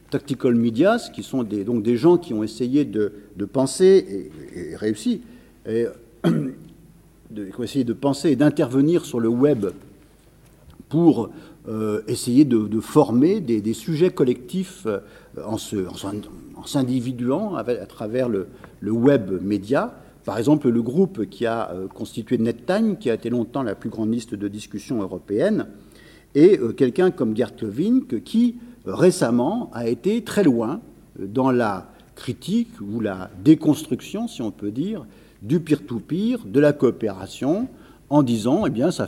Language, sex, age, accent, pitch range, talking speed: French, male, 50-69, French, 110-160 Hz, 155 wpm